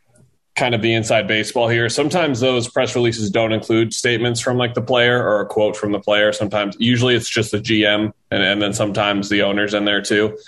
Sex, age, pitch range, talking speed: male, 20-39, 105-120 Hz, 220 wpm